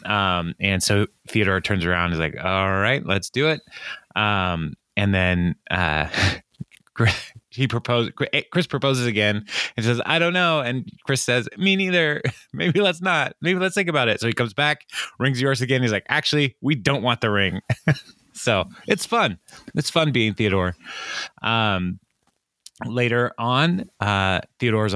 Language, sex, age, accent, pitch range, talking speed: English, male, 20-39, American, 95-130 Hz, 165 wpm